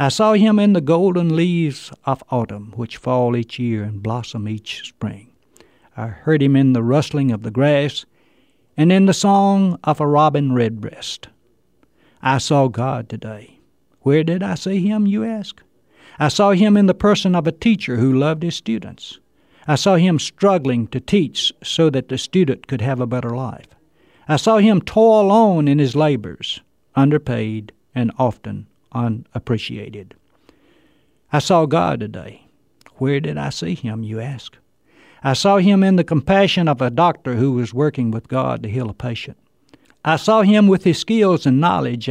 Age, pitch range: 60-79, 120-180 Hz